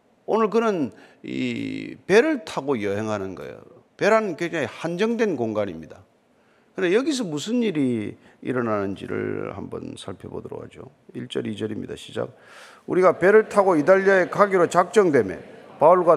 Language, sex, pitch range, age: Korean, male, 140-215 Hz, 40-59